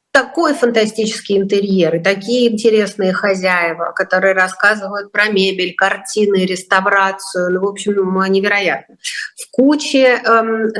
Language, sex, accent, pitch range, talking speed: Russian, female, native, 195-240 Hz, 110 wpm